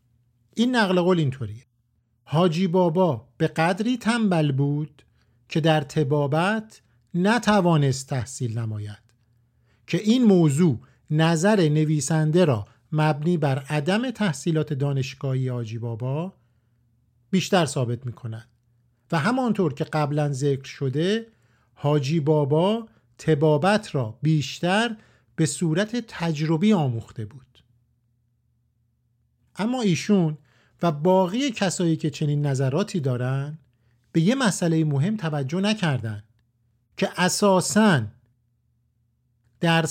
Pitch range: 120-180 Hz